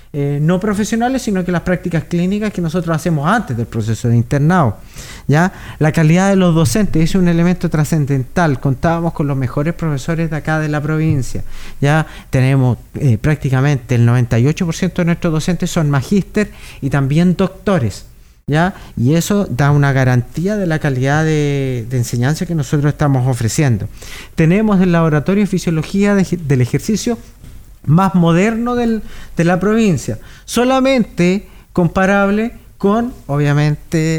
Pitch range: 125-170 Hz